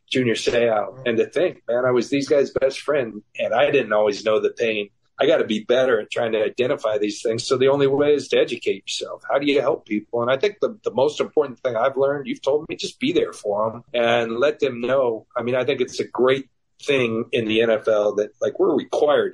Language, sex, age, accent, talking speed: English, male, 40-59, American, 250 wpm